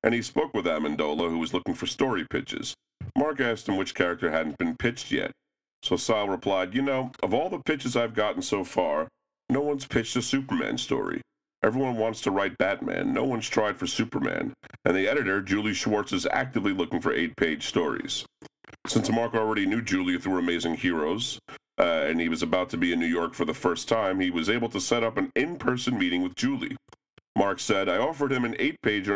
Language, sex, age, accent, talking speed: English, male, 40-59, American, 205 wpm